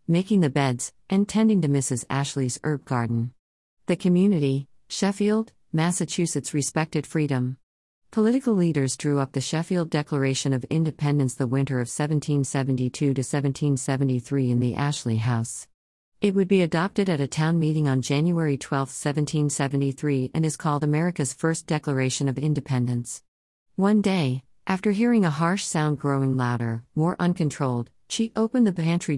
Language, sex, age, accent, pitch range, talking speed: English, female, 50-69, American, 130-155 Hz, 140 wpm